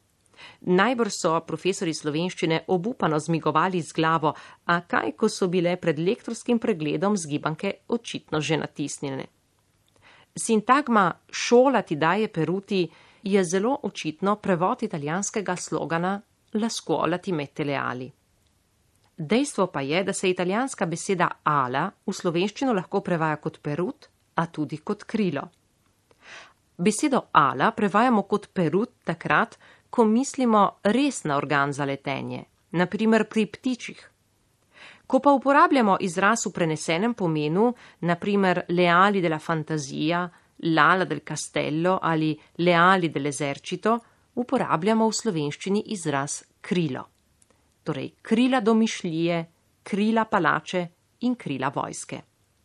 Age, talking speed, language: 40-59, 115 wpm, Italian